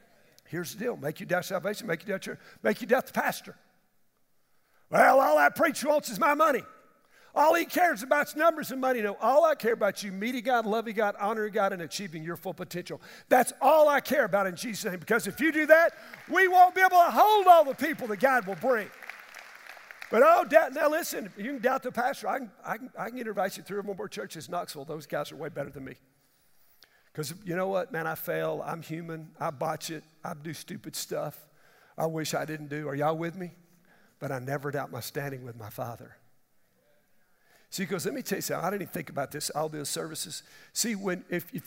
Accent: American